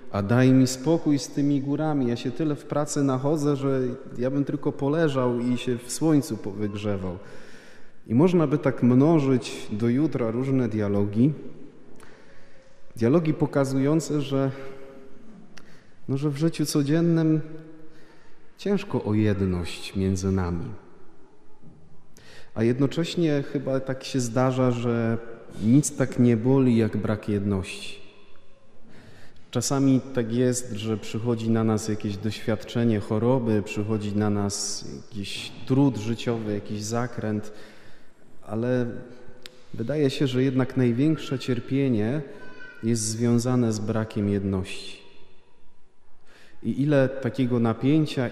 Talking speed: 115 wpm